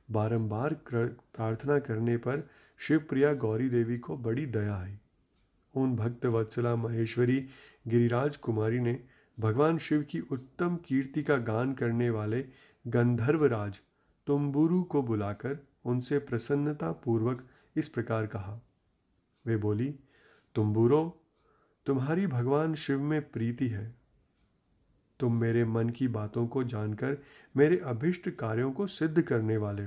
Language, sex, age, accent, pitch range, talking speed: Hindi, male, 30-49, native, 115-145 Hz, 125 wpm